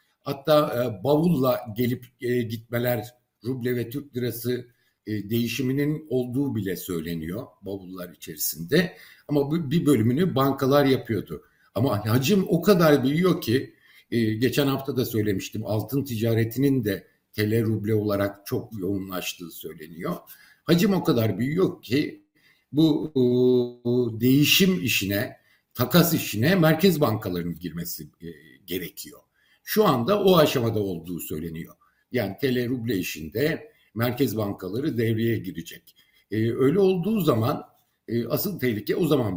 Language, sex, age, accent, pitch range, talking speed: Turkish, male, 60-79, native, 110-150 Hz, 125 wpm